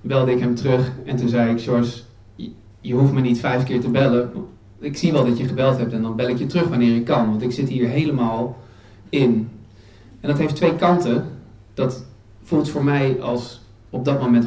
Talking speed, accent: 215 wpm, Dutch